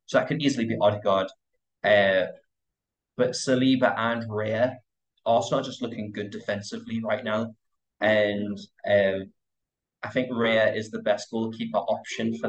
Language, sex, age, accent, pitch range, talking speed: English, male, 20-39, British, 105-120 Hz, 145 wpm